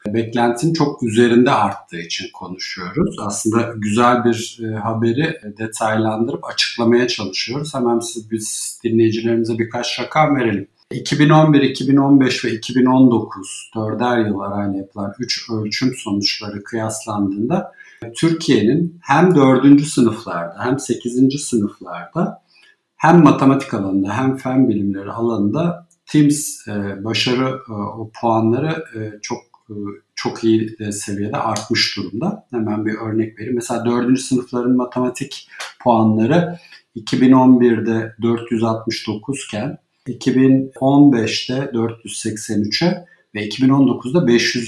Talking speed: 100 wpm